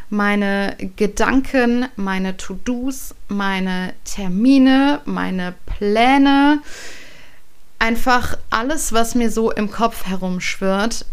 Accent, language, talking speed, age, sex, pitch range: German, German, 85 wpm, 30-49, female, 180-230 Hz